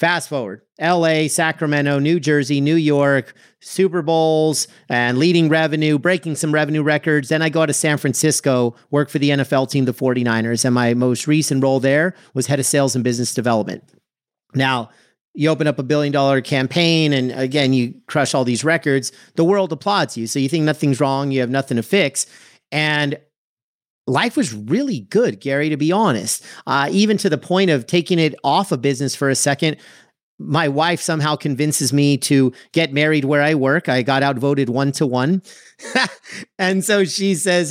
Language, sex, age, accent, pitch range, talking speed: English, male, 40-59, American, 135-160 Hz, 185 wpm